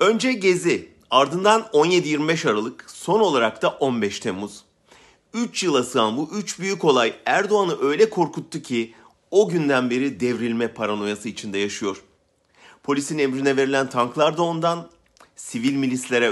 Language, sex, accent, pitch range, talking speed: German, male, Turkish, 120-170 Hz, 130 wpm